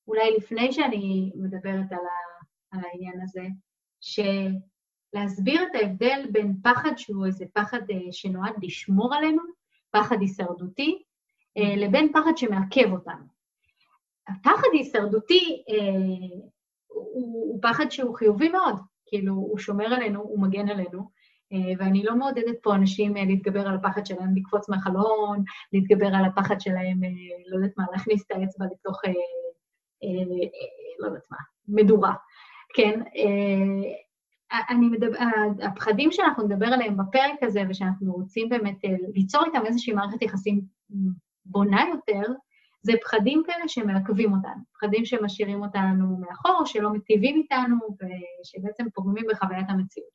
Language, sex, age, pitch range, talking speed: Hebrew, female, 30-49, 195-240 Hz, 120 wpm